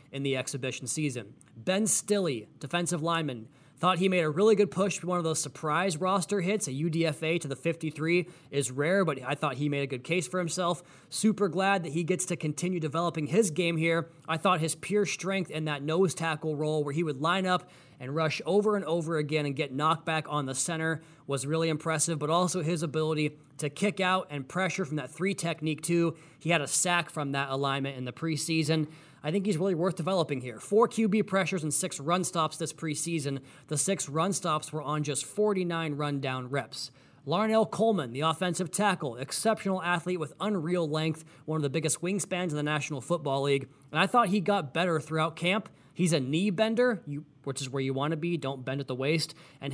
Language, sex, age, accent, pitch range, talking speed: English, male, 20-39, American, 145-180 Hz, 210 wpm